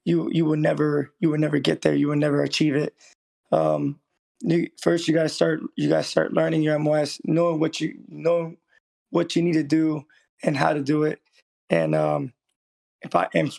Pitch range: 140-160 Hz